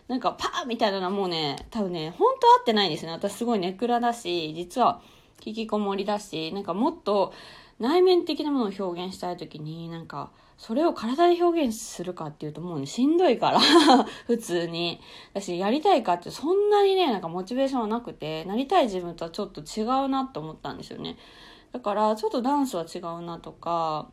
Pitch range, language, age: 175-265 Hz, Japanese, 20-39